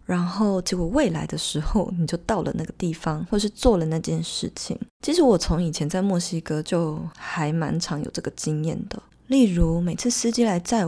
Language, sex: Chinese, female